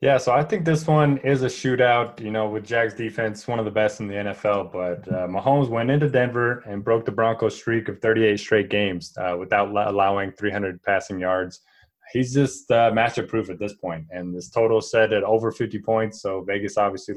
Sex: male